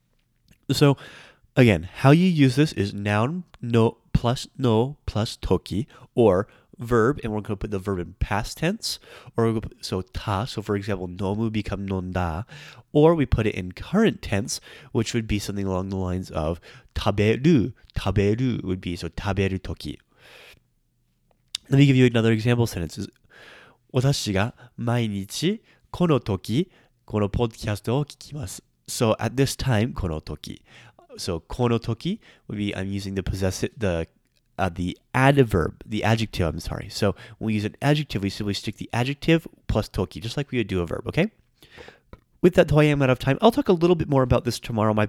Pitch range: 100-130 Hz